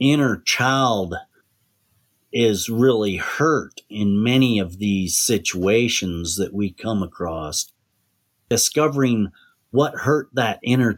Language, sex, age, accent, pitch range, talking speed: English, male, 40-59, American, 100-130 Hz, 105 wpm